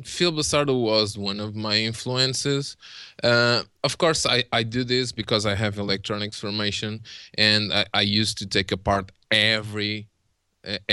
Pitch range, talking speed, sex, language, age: 105-125 Hz, 155 wpm, male, English, 20-39